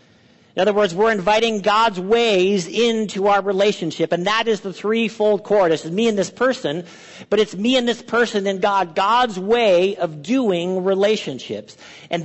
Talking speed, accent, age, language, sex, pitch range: 170 wpm, American, 50-69, English, male, 175-220 Hz